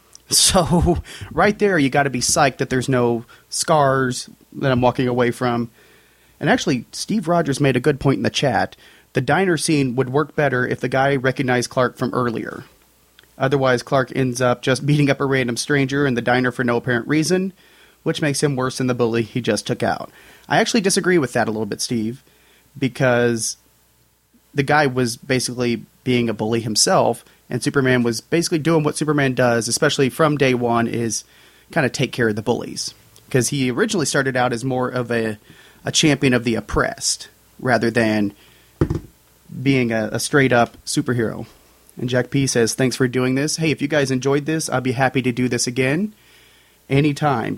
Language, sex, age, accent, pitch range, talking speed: English, male, 30-49, American, 120-140 Hz, 190 wpm